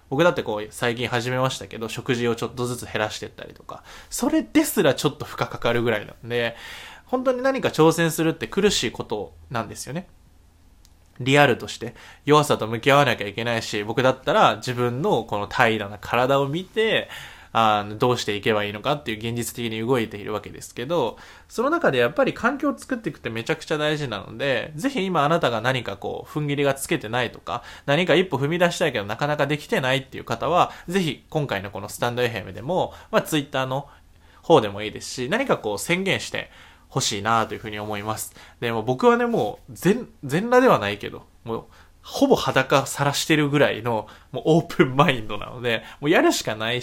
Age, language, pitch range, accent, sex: 20-39, Japanese, 115-165 Hz, native, male